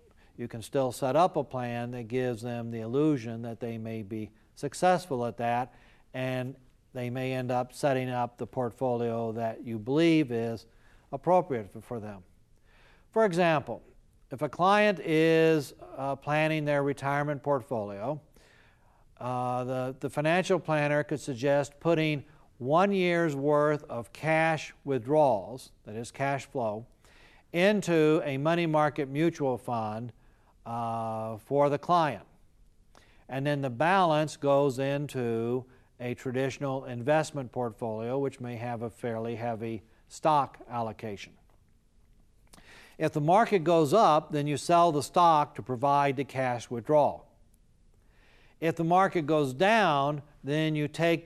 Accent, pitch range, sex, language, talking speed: American, 120-150 Hz, male, English, 135 wpm